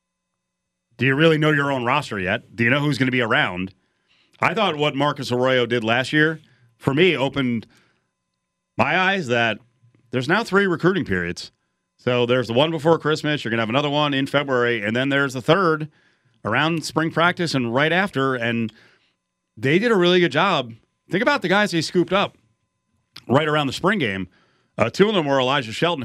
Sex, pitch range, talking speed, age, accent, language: male, 110-150 Hz, 200 wpm, 40-59, American, English